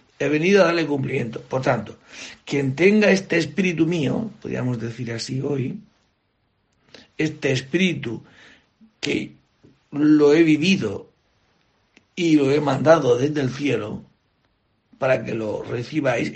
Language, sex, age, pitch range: Spanish, male, 60-79, 115-155 Hz